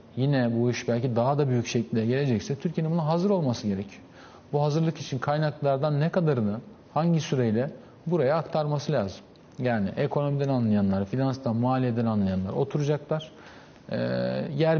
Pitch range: 115-150 Hz